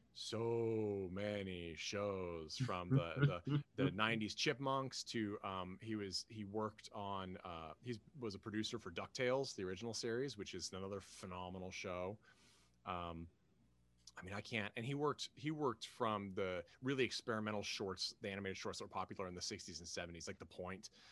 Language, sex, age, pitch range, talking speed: English, male, 30-49, 95-115 Hz, 170 wpm